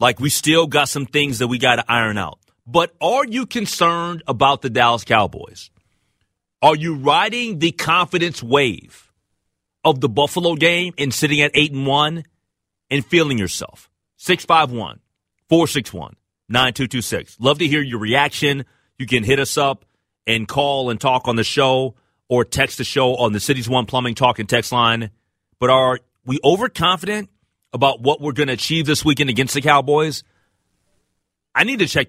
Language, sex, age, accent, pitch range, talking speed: English, male, 30-49, American, 110-150 Hz, 170 wpm